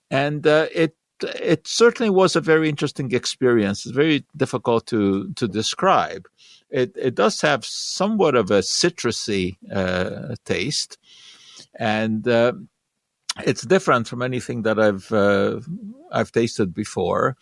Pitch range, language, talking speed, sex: 100-135 Hz, English, 130 wpm, male